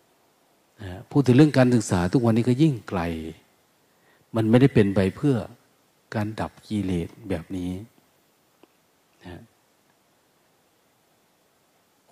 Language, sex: Thai, male